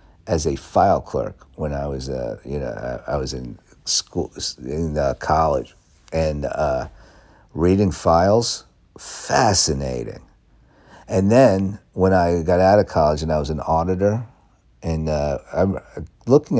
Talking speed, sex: 145 wpm, male